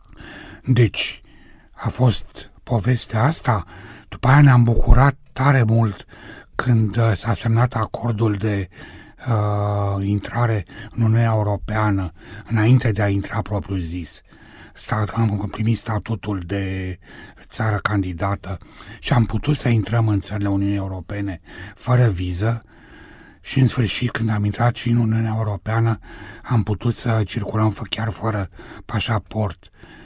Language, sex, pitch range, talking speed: Romanian, male, 100-120 Hz, 120 wpm